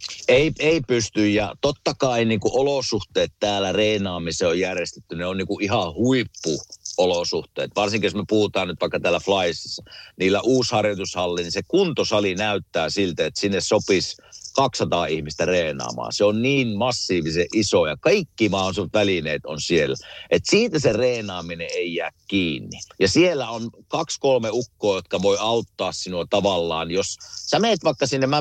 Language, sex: Finnish, male